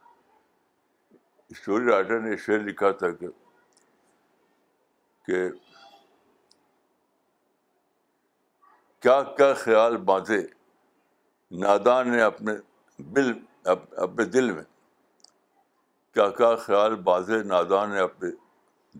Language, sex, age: Urdu, male, 60-79